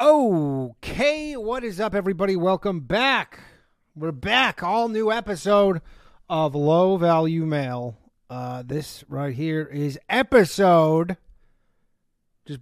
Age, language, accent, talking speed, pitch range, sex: 30-49, English, American, 110 wpm, 155-235 Hz, male